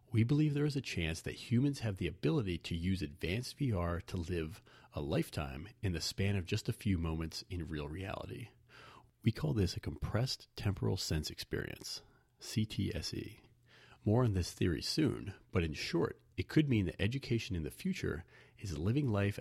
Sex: male